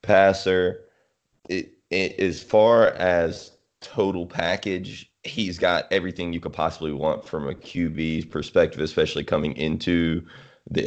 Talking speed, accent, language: 125 wpm, American, English